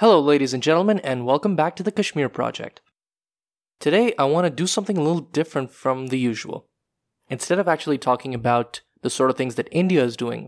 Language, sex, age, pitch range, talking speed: English, male, 20-39, 125-160 Hz, 205 wpm